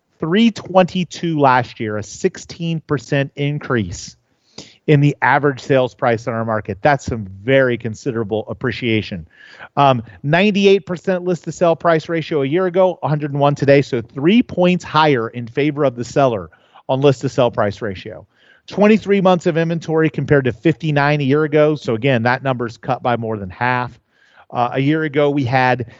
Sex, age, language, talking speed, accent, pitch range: male, 40-59, English, 155 wpm, American, 125-165 Hz